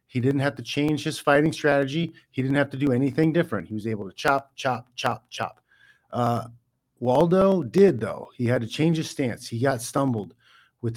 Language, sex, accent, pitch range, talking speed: English, male, American, 115-140 Hz, 200 wpm